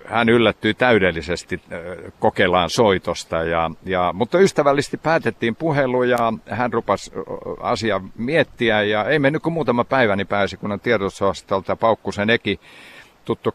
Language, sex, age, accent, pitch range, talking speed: Finnish, male, 60-79, native, 95-120 Hz, 130 wpm